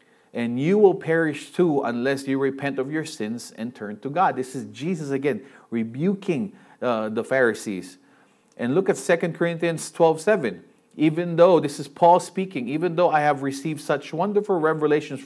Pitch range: 140-185 Hz